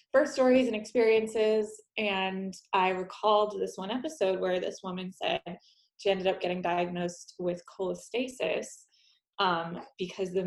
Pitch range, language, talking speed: 185-220 Hz, English, 140 wpm